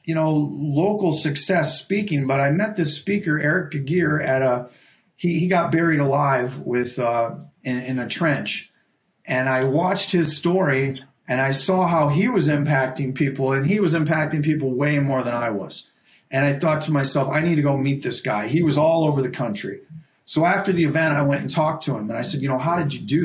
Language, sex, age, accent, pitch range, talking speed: English, male, 40-59, American, 130-155 Hz, 220 wpm